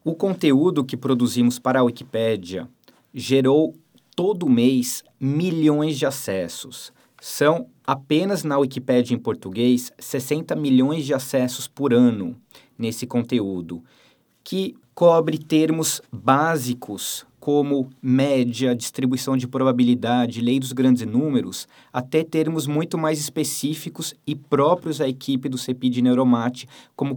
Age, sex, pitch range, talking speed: 20-39, male, 125-155 Hz, 120 wpm